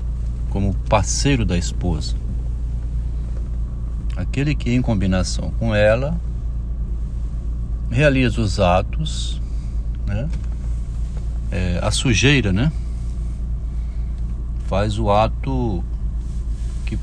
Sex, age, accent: male, 60-79, Brazilian